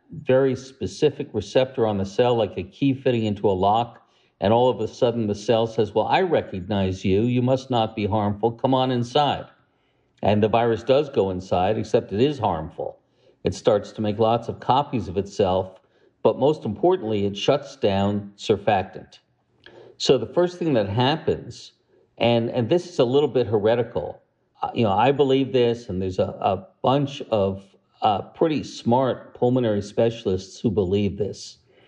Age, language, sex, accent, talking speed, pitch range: 50-69, English, male, American, 175 wpm, 100-125 Hz